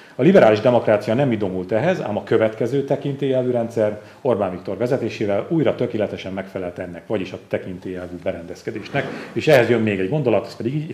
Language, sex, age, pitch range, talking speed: Hungarian, male, 40-59, 100-120 Hz, 170 wpm